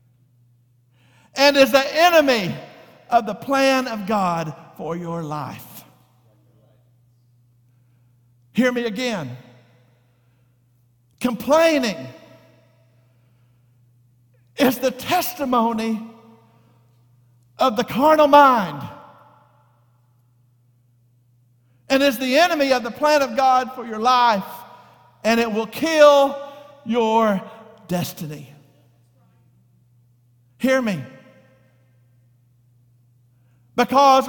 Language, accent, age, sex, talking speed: English, American, 50-69, male, 75 wpm